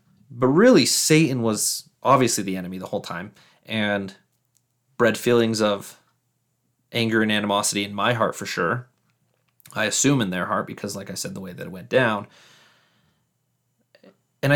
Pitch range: 105-130 Hz